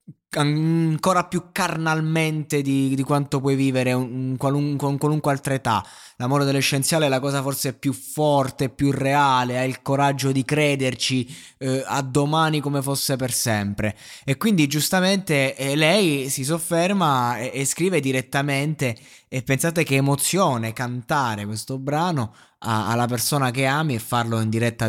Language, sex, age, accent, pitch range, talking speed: Italian, male, 20-39, native, 125-155 Hz, 145 wpm